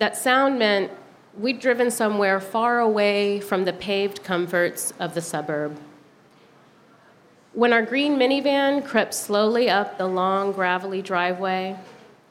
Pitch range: 175-215 Hz